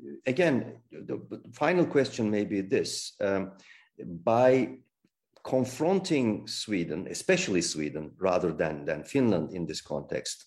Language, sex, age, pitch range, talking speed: Turkish, male, 50-69, 85-125 Hz, 115 wpm